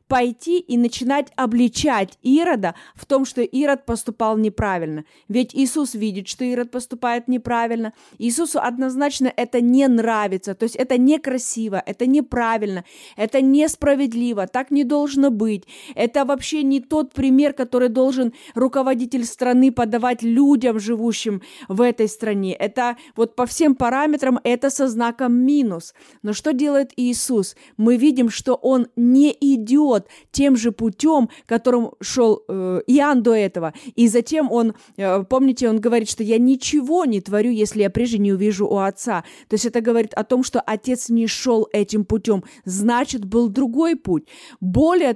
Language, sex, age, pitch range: Russian, female, 20-39, 220-270 Hz